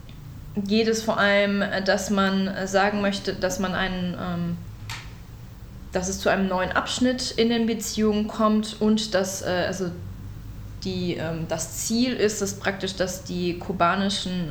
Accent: German